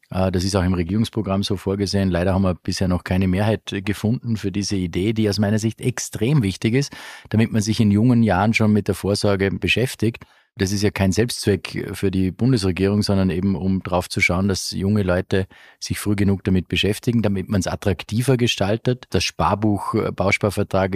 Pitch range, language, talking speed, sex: 95-110 Hz, German, 185 wpm, male